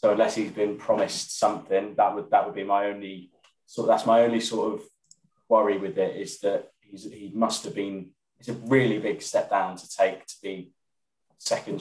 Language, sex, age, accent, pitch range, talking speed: English, male, 20-39, British, 90-105 Hz, 205 wpm